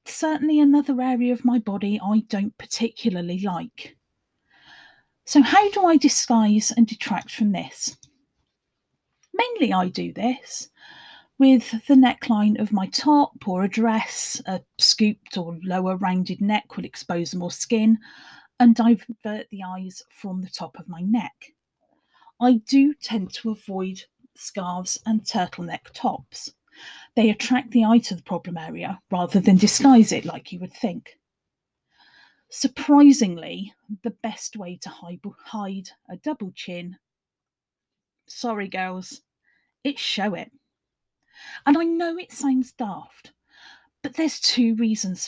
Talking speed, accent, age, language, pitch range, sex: 135 wpm, British, 40-59, English, 190-265 Hz, female